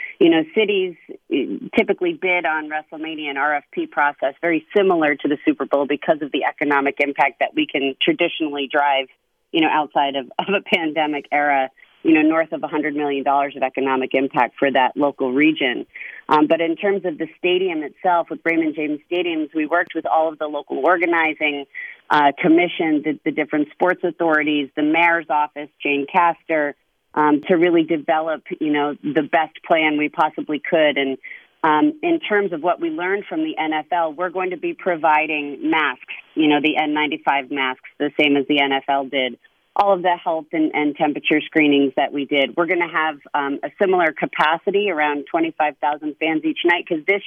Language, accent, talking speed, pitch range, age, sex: English, American, 185 wpm, 145-175 Hz, 30-49, female